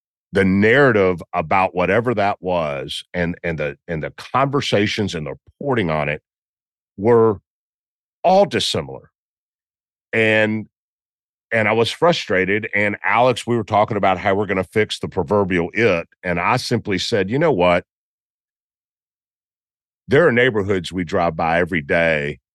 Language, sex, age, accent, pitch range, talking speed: English, male, 50-69, American, 80-105 Hz, 145 wpm